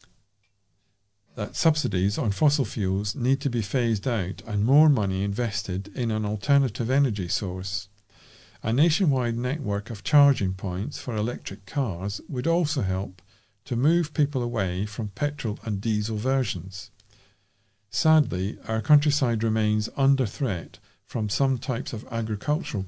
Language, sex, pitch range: English, male, 100-130 Hz